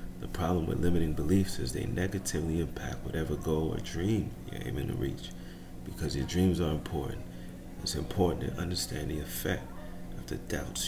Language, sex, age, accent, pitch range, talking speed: English, male, 40-59, American, 70-90 Hz, 170 wpm